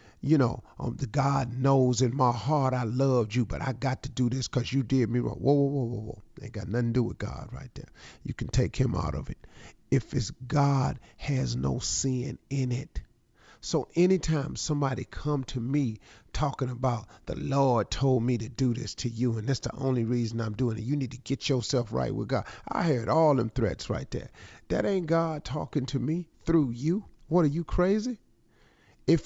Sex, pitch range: male, 120-155 Hz